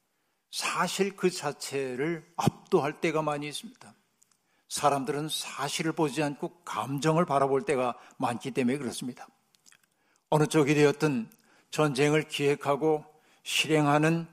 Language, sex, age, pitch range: Korean, male, 60-79, 140-170 Hz